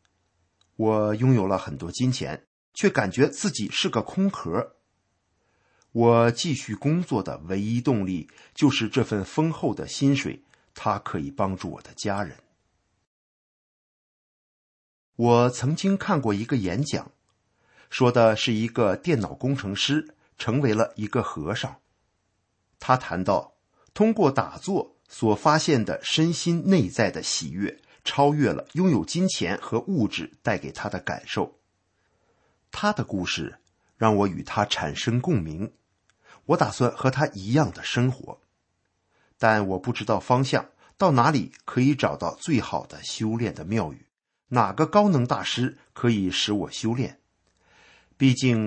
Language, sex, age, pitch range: Chinese, male, 50-69, 100-140 Hz